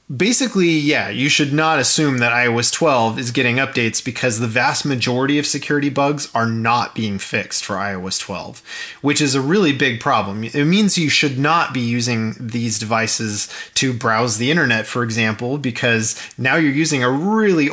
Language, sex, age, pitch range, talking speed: English, male, 30-49, 120-160 Hz, 180 wpm